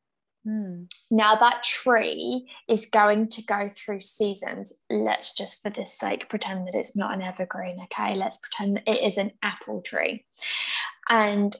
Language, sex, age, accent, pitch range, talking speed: English, female, 10-29, British, 200-225 Hz, 155 wpm